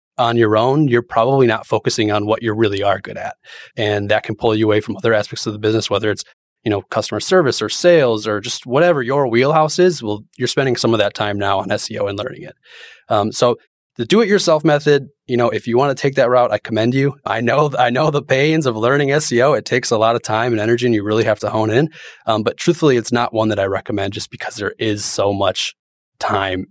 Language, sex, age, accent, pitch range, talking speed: English, male, 30-49, American, 105-130 Hz, 245 wpm